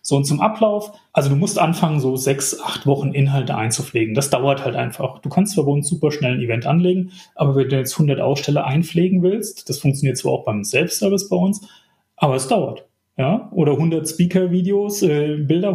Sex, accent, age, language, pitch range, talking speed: male, German, 30-49, German, 140-185 Hz, 200 wpm